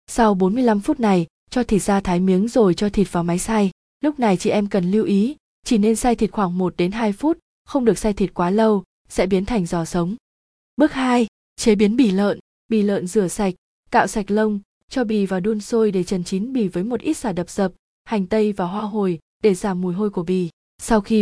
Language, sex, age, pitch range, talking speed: Vietnamese, female, 20-39, 190-225 Hz, 235 wpm